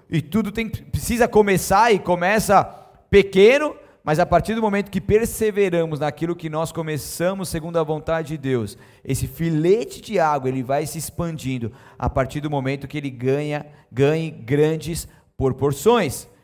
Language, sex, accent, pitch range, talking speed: Portuguese, male, Brazilian, 150-185 Hz, 155 wpm